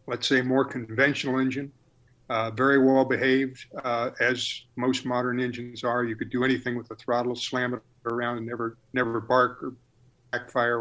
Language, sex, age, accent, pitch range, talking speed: English, male, 50-69, American, 120-135 Hz, 170 wpm